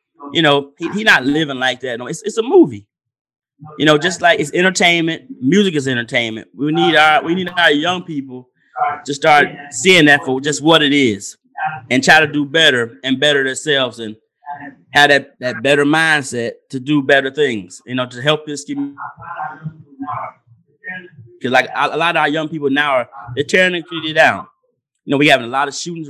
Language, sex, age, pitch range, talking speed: English, male, 30-49, 130-160 Hz, 195 wpm